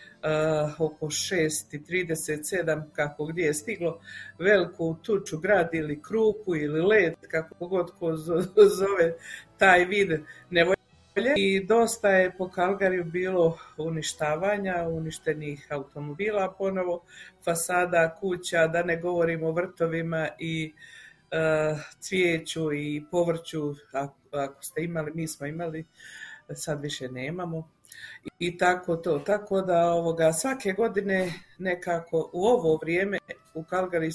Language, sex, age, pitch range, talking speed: Croatian, female, 50-69, 155-185 Hz, 115 wpm